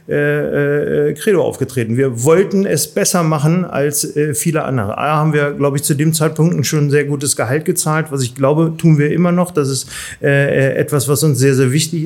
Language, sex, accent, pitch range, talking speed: German, male, German, 140-165 Hz, 195 wpm